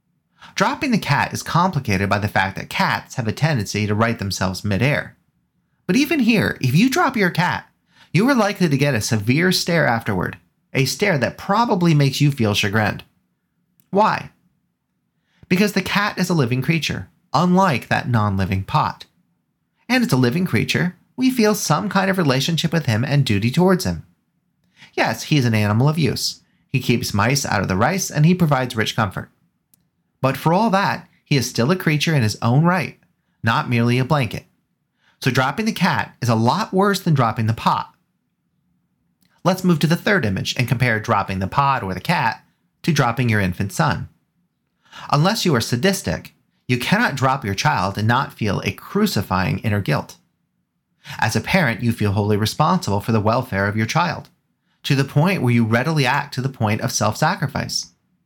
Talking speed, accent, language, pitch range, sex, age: 185 wpm, American, English, 110-180 Hz, male, 30-49